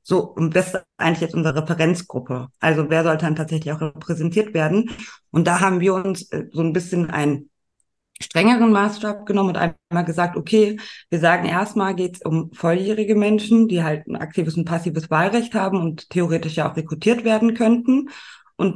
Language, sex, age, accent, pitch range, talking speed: German, female, 20-39, German, 155-185 Hz, 180 wpm